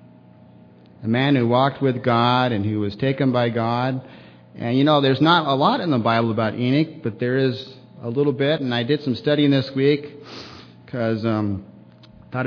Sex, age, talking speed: male, 40-59, 190 wpm